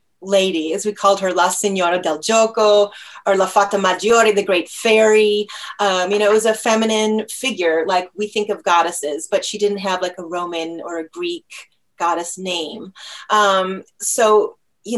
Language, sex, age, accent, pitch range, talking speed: English, female, 30-49, American, 175-210 Hz, 175 wpm